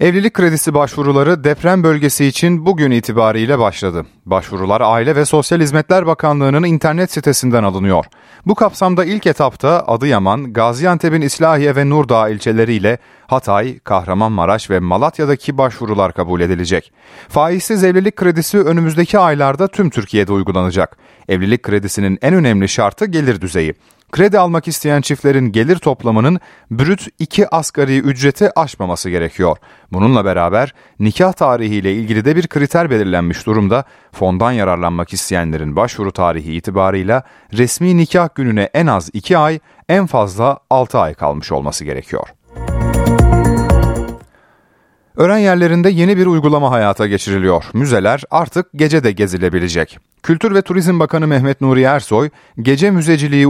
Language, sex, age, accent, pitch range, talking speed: Turkish, male, 30-49, native, 100-160 Hz, 125 wpm